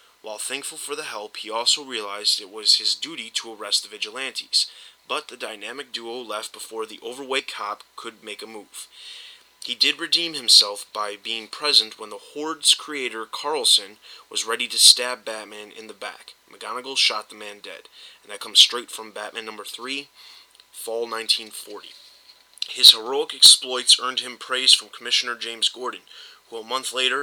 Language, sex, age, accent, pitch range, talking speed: English, male, 20-39, American, 110-135 Hz, 170 wpm